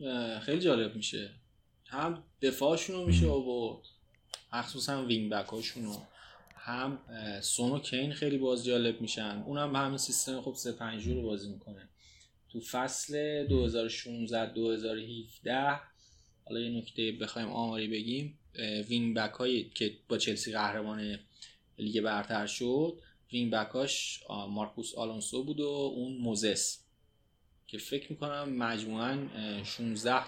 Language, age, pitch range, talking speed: Persian, 20-39, 105-130 Hz, 115 wpm